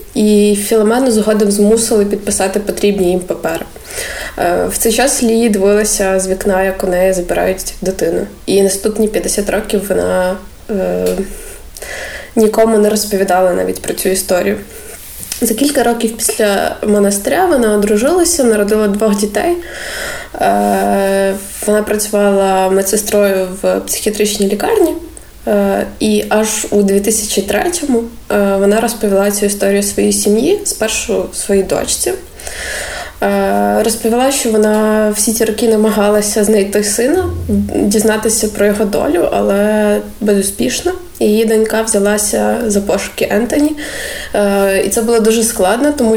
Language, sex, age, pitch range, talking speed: Ukrainian, female, 20-39, 200-220 Hz, 120 wpm